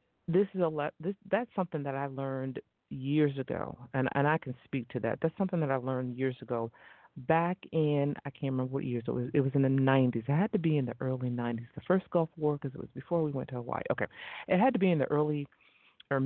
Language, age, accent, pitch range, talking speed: English, 50-69, American, 130-165 Hz, 255 wpm